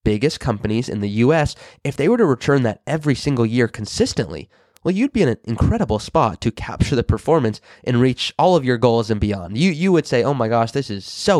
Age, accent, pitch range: 20-39, American, 110-140 Hz